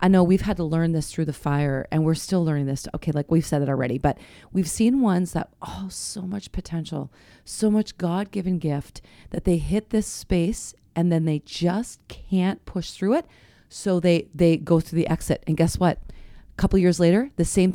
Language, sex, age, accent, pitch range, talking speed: English, female, 40-59, American, 165-205 Hz, 215 wpm